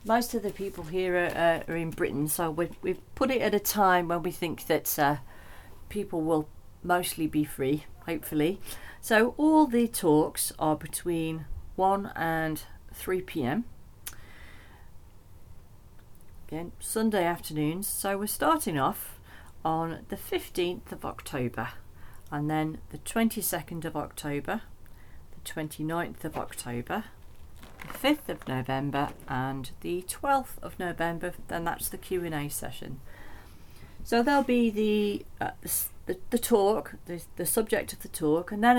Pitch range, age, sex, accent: 150-190 Hz, 40-59, female, British